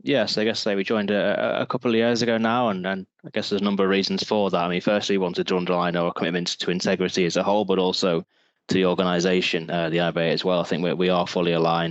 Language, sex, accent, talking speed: English, male, British, 275 wpm